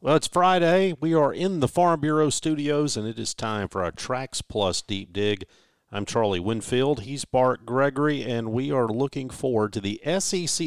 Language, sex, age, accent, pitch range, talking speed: English, male, 50-69, American, 105-140 Hz, 190 wpm